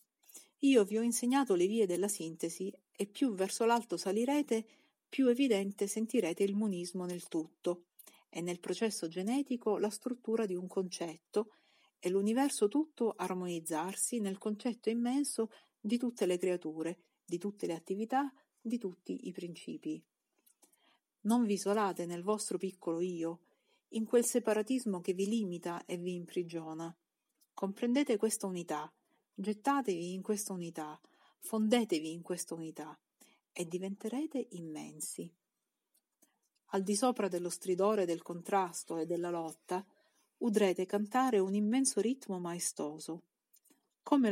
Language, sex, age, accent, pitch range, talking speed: Italian, female, 40-59, native, 175-225 Hz, 130 wpm